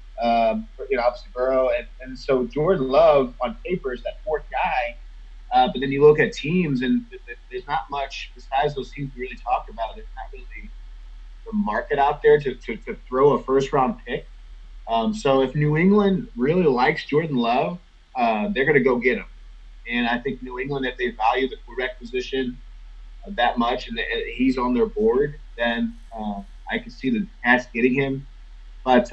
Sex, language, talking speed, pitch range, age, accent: male, English, 185 wpm, 120-165 Hz, 30-49, American